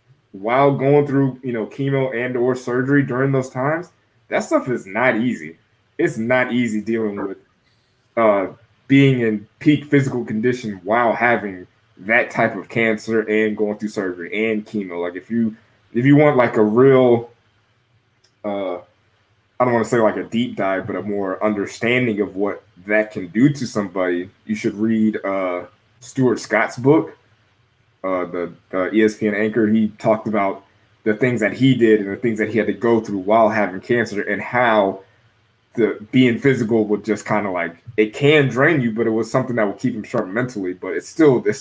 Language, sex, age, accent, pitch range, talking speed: English, male, 20-39, American, 105-125 Hz, 185 wpm